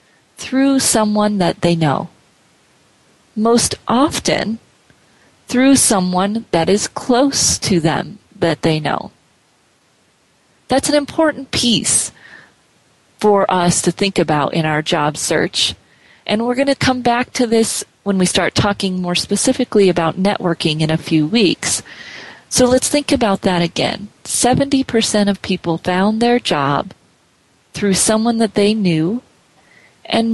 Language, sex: English, female